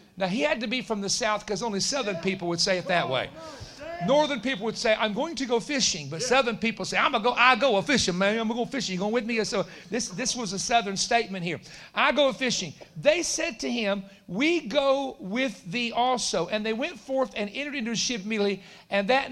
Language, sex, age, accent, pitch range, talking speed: English, male, 50-69, American, 190-245 Hz, 240 wpm